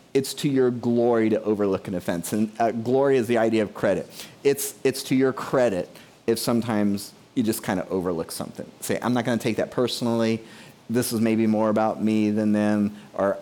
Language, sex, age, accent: English, male, 30-49, American